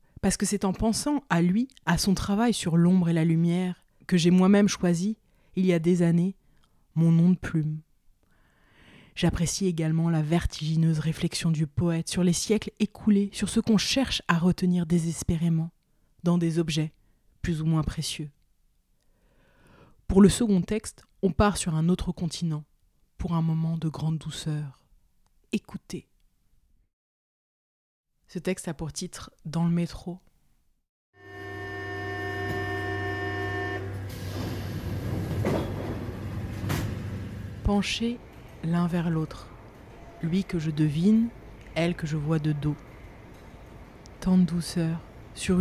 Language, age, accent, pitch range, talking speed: French, 20-39, French, 135-185 Hz, 125 wpm